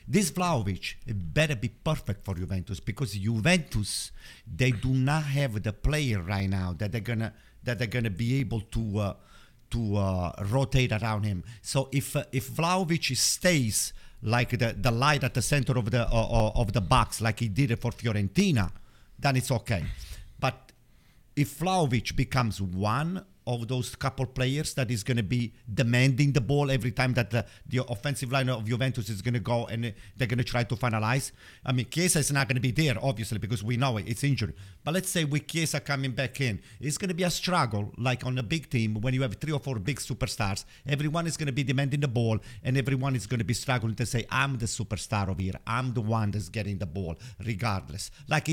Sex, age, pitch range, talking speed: male, 50-69, 115-140 Hz, 215 wpm